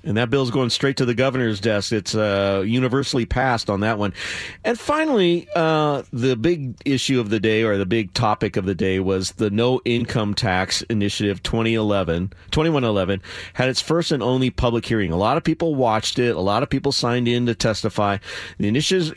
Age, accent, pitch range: 40-59, American, 110-150 Hz